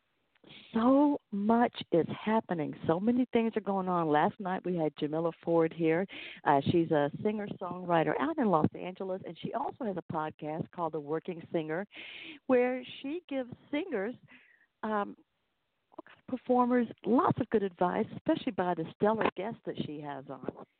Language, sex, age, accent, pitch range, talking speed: English, female, 50-69, American, 160-225 Hz, 155 wpm